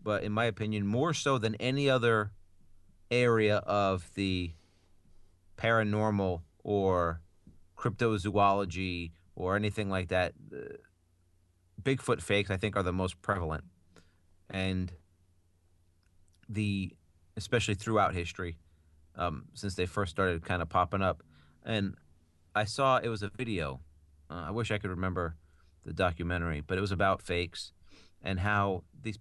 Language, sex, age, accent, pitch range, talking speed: English, male, 30-49, American, 90-105 Hz, 130 wpm